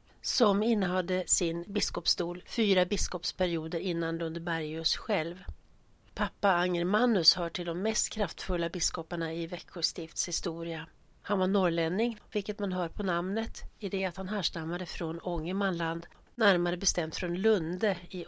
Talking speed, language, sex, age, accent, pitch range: 130 wpm, Swedish, female, 60-79, native, 165-190 Hz